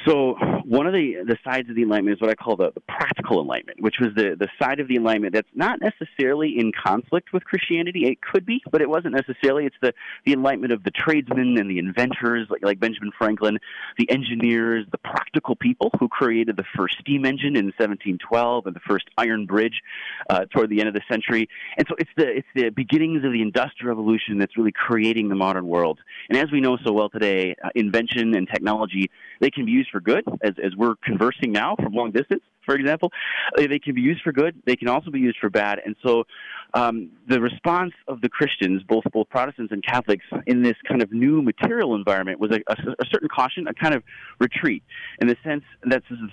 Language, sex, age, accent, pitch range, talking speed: English, male, 30-49, American, 110-140 Hz, 220 wpm